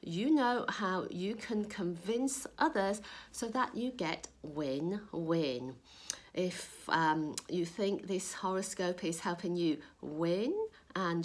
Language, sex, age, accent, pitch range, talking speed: English, female, 50-69, British, 175-240 Hz, 125 wpm